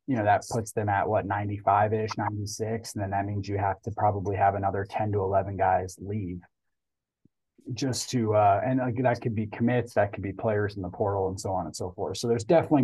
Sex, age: male, 20-39